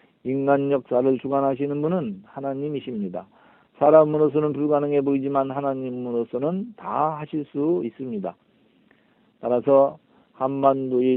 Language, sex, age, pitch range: Korean, male, 40-59, 120-150 Hz